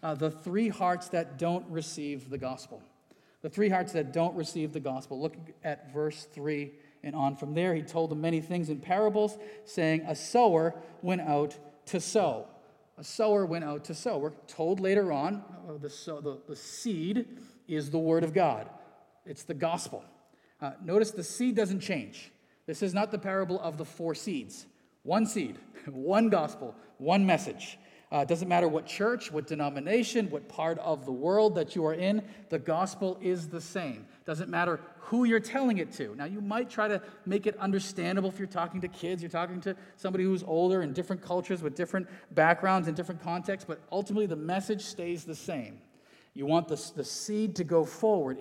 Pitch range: 150-195 Hz